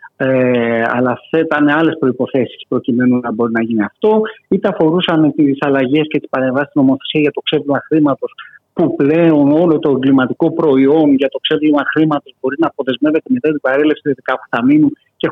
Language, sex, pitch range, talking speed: Greek, male, 145-185 Hz, 160 wpm